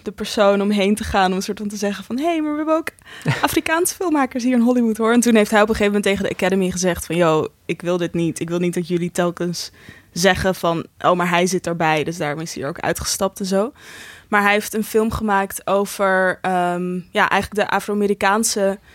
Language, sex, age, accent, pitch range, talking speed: Dutch, female, 20-39, Dutch, 180-210 Hz, 240 wpm